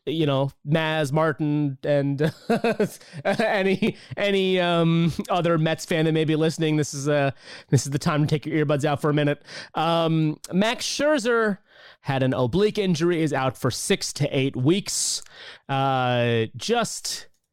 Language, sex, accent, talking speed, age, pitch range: English, male, American, 160 wpm, 30-49, 135-175 Hz